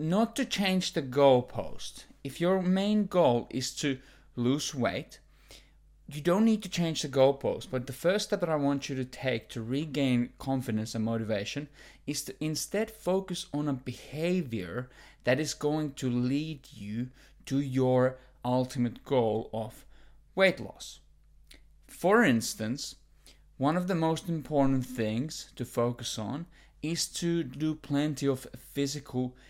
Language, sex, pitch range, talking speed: English, male, 120-150 Hz, 150 wpm